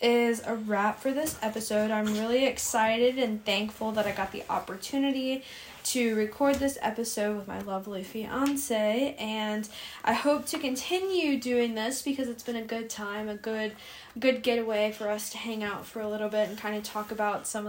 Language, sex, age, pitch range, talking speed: English, female, 10-29, 205-250 Hz, 190 wpm